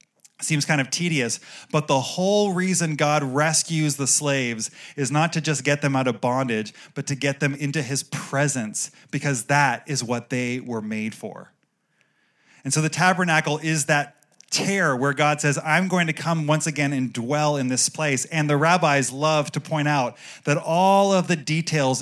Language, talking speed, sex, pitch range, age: English, 190 wpm, male, 135-165 Hz, 30-49